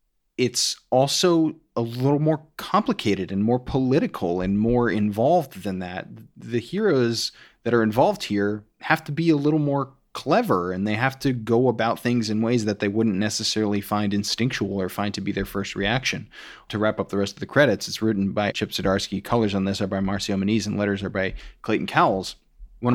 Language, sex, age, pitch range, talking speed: English, male, 30-49, 100-130 Hz, 200 wpm